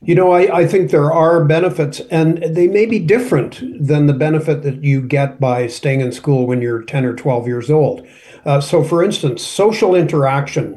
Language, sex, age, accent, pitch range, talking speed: English, male, 50-69, American, 130-165 Hz, 200 wpm